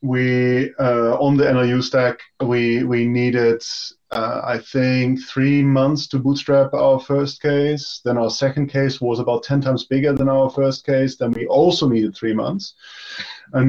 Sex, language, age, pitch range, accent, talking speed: male, English, 30-49, 115-135 Hz, German, 170 wpm